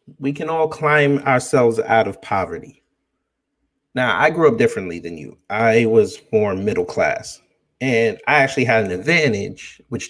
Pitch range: 110-150 Hz